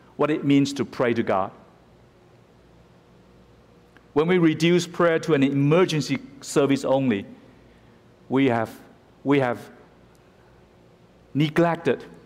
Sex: male